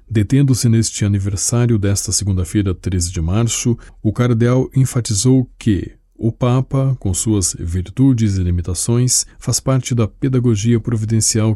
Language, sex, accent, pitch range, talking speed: Portuguese, male, Brazilian, 95-120 Hz, 125 wpm